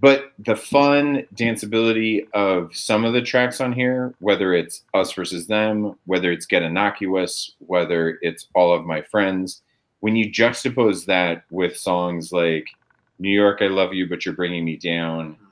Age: 30-49